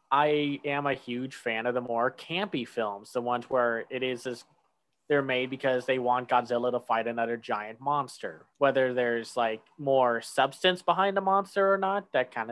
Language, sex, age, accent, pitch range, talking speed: English, male, 20-39, American, 120-150 Hz, 185 wpm